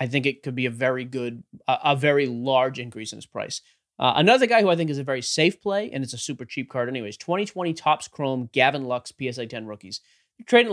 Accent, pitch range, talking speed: American, 125-160 Hz, 240 wpm